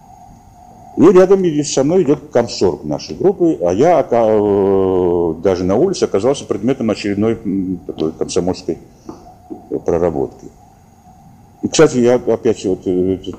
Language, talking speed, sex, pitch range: Russian, 110 wpm, male, 90-115 Hz